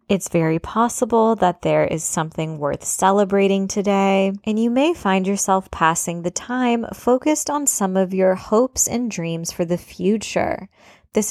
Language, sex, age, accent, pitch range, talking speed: English, female, 20-39, American, 175-225 Hz, 160 wpm